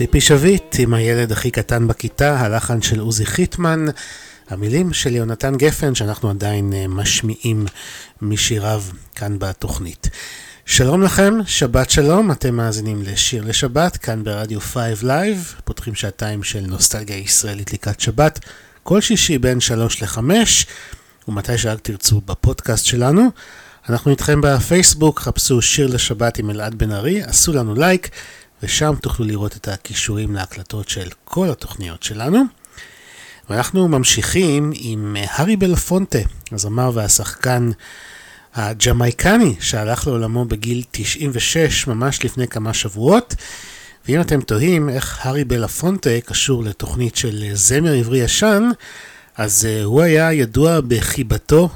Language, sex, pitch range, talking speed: Hebrew, male, 105-150 Hz, 125 wpm